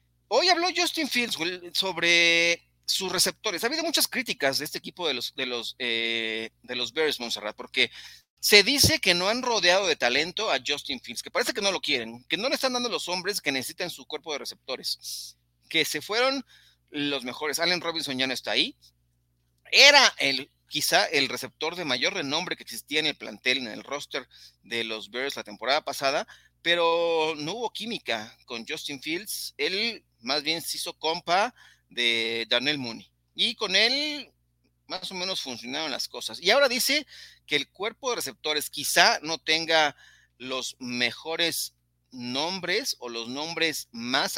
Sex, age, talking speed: male, 40-59, 175 wpm